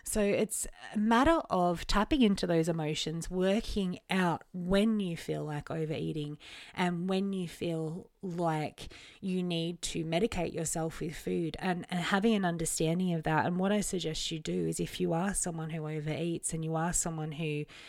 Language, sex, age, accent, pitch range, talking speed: English, female, 30-49, Australian, 160-205 Hz, 180 wpm